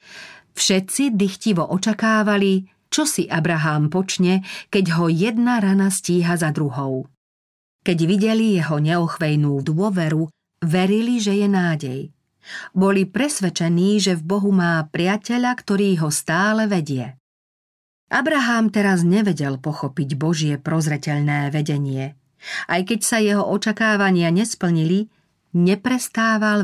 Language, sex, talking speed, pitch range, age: Slovak, female, 110 wpm, 155-205 Hz, 40-59